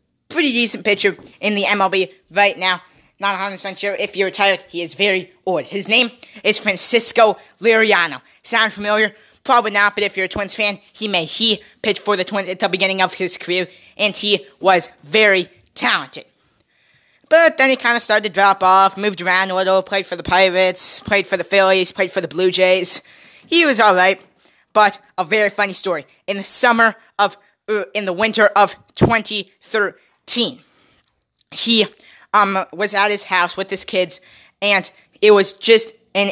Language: English